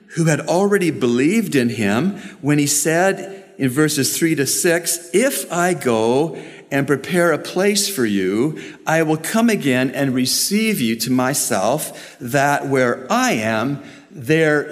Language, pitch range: English, 125-190 Hz